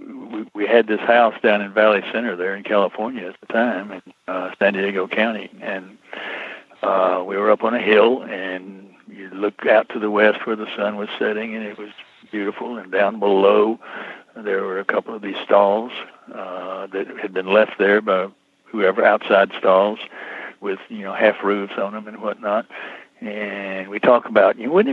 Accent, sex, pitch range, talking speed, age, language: American, male, 100-110 Hz, 185 wpm, 60-79, English